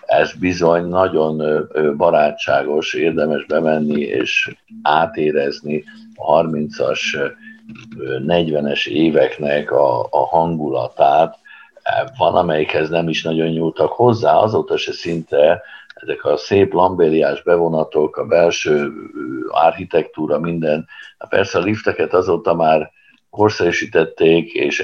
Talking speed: 95 wpm